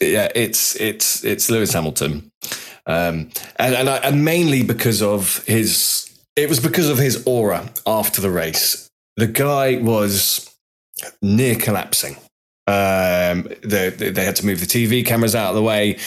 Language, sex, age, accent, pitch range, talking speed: English, male, 20-39, British, 95-120 Hz, 155 wpm